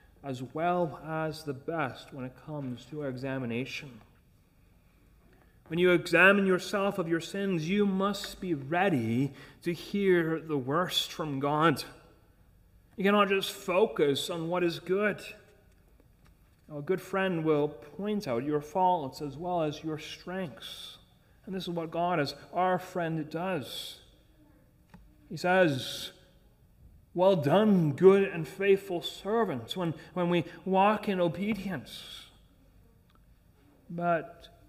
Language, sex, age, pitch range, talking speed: English, male, 30-49, 140-180 Hz, 125 wpm